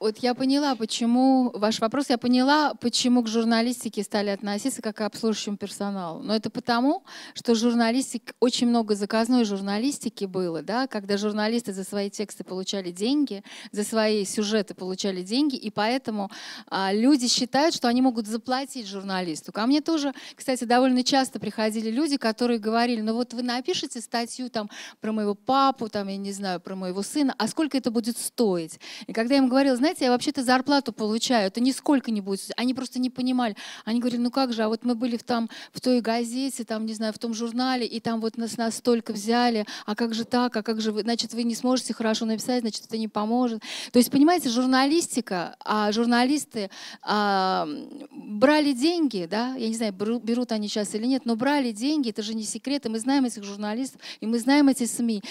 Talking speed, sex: 195 wpm, female